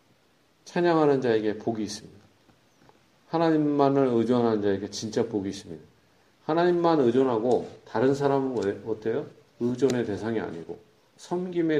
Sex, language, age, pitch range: male, Korean, 40-59, 115-170 Hz